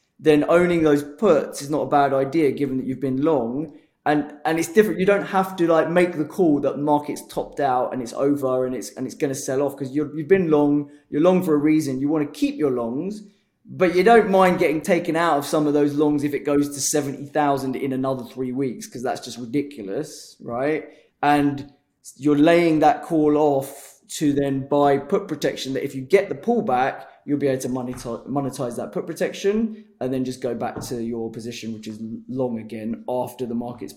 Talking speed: 215 wpm